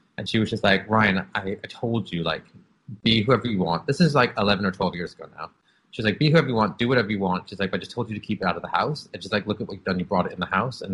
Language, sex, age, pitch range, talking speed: English, male, 30-49, 95-115 Hz, 345 wpm